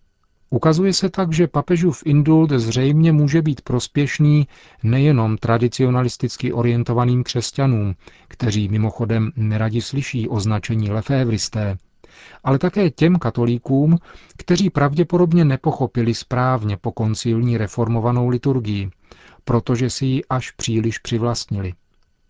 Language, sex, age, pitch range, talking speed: Czech, male, 40-59, 110-135 Hz, 100 wpm